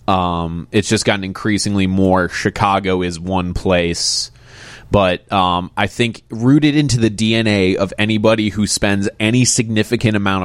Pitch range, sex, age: 95-115 Hz, male, 20-39